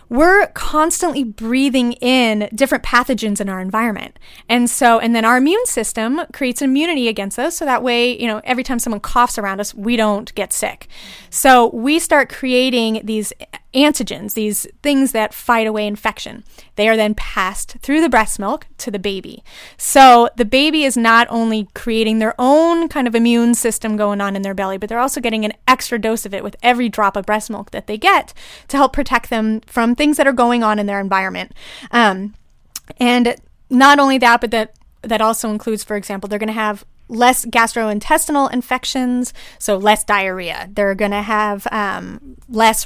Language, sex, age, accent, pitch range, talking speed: English, female, 30-49, American, 215-255 Hz, 190 wpm